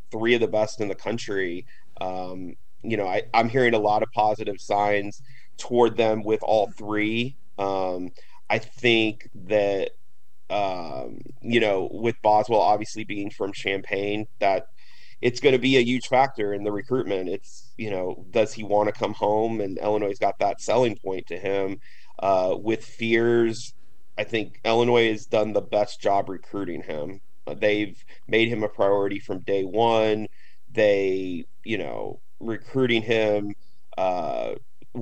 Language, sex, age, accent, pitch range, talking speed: English, male, 30-49, American, 100-120 Hz, 160 wpm